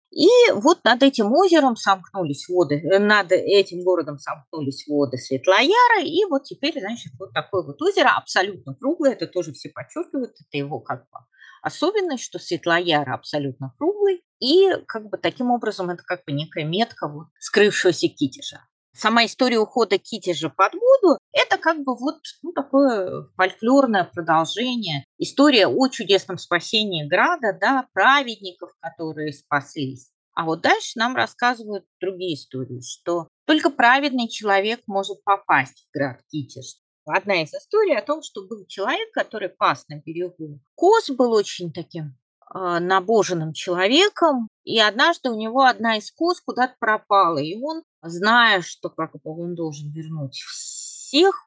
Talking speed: 145 wpm